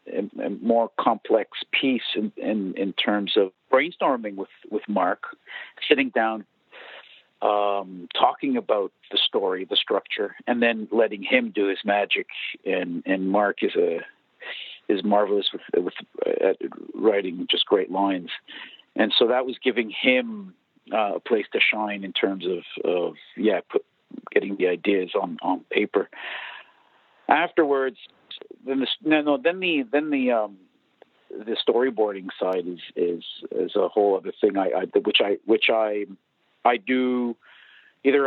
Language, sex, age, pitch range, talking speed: English, male, 50-69, 100-145 Hz, 150 wpm